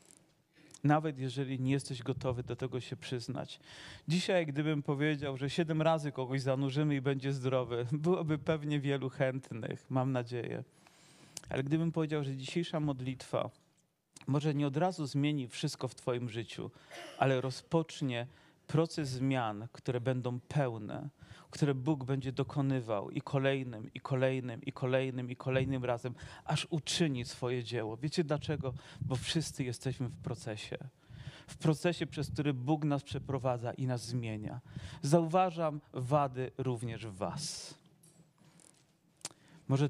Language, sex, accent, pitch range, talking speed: Polish, male, native, 130-155 Hz, 130 wpm